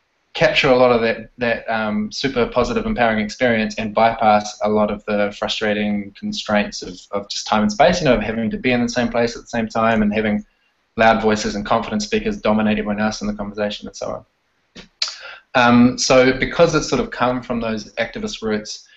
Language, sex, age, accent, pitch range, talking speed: English, male, 20-39, Australian, 105-130 Hz, 210 wpm